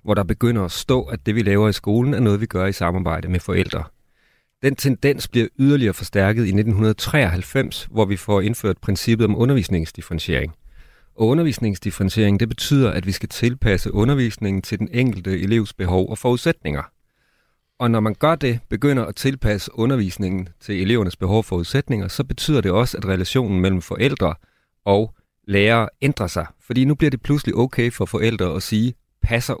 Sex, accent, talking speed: male, native, 175 wpm